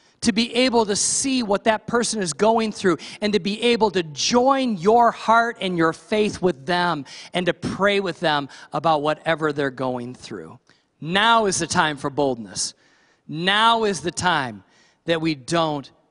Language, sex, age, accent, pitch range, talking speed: English, male, 40-59, American, 155-200 Hz, 175 wpm